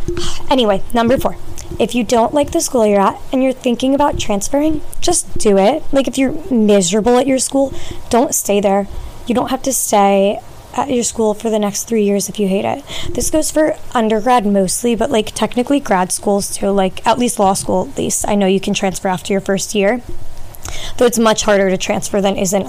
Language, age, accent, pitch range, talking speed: English, 20-39, American, 200-245 Hz, 215 wpm